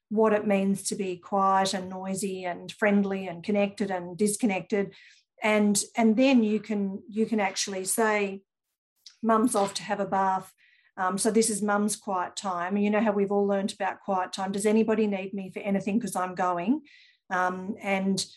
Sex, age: female, 40-59